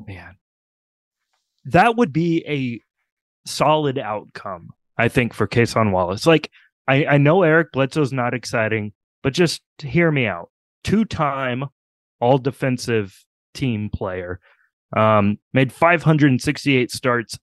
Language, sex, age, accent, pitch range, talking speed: English, male, 30-49, American, 110-135 Hz, 115 wpm